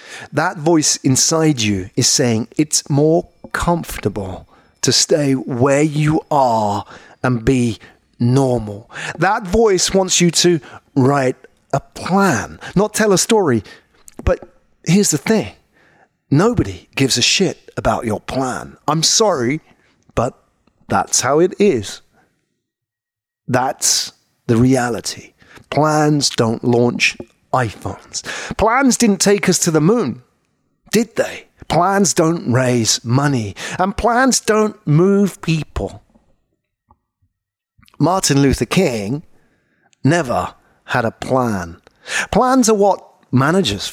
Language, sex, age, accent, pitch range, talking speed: English, male, 40-59, British, 120-190 Hz, 115 wpm